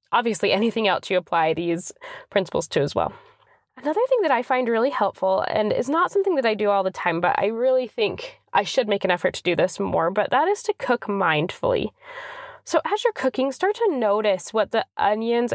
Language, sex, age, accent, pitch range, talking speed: English, female, 10-29, American, 215-315 Hz, 215 wpm